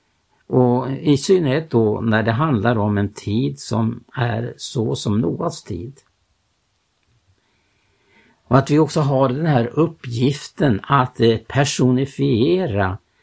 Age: 60-79